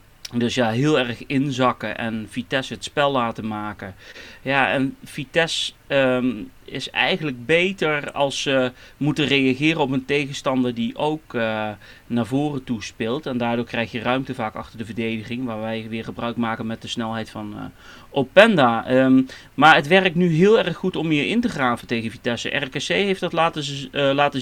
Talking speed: 175 wpm